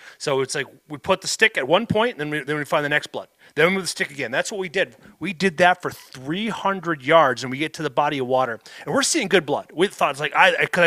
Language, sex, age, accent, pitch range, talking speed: English, male, 30-49, American, 145-180 Hz, 305 wpm